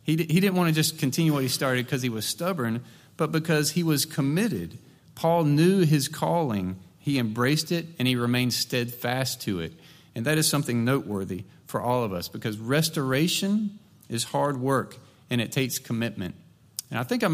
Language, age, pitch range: English, 40-59, 110-145 Hz